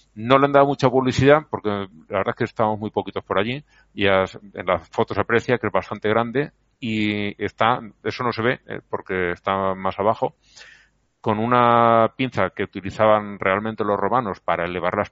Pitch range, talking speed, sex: 95-115 Hz, 190 wpm, male